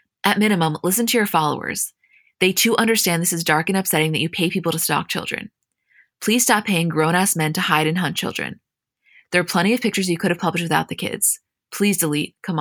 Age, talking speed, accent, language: 20-39, 225 wpm, American, English